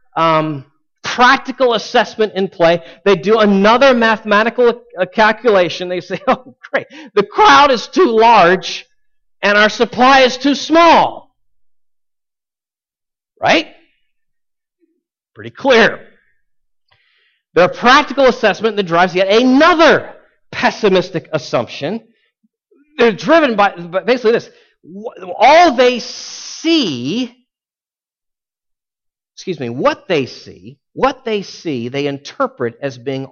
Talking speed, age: 105 wpm, 50-69